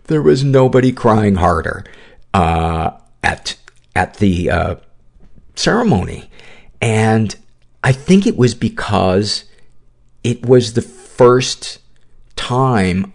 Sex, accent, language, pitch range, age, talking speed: male, American, English, 90-120 Hz, 50-69, 100 wpm